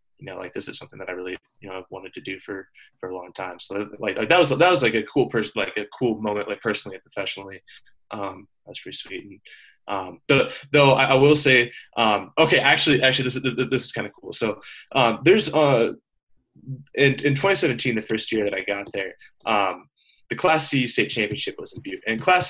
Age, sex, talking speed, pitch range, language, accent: 20-39, male, 230 wpm, 105-135 Hz, English, American